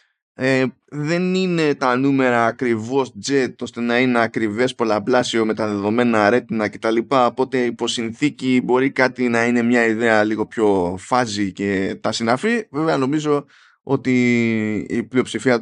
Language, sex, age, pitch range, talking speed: Greek, male, 20-39, 110-145 Hz, 135 wpm